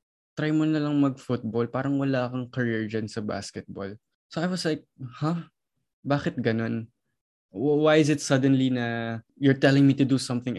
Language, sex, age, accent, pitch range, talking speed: Filipino, male, 20-39, native, 115-145 Hz, 180 wpm